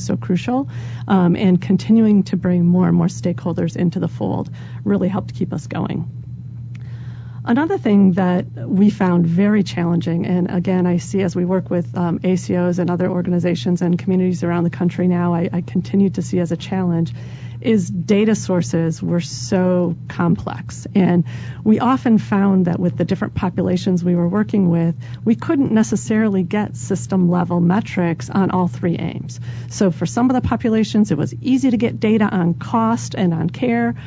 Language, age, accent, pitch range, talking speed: English, 40-59, American, 170-205 Hz, 175 wpm